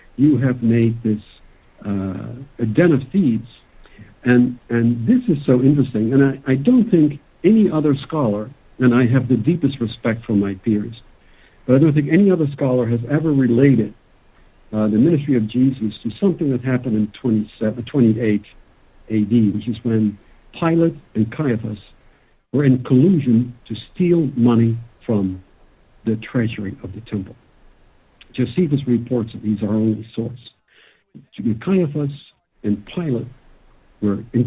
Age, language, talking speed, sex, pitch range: 60-79, English, 150 wpm, male, 110-145 Hz